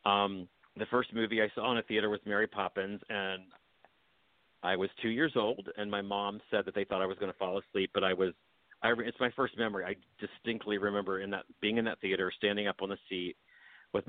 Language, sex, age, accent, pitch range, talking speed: English, male, 40-59, American, 95-115 Hz, 230 wpm